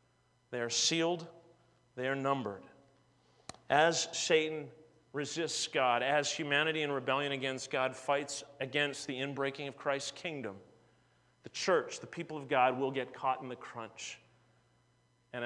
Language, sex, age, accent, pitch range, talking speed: English, male, 40-59, American, 125-155 Hz, 140 wpm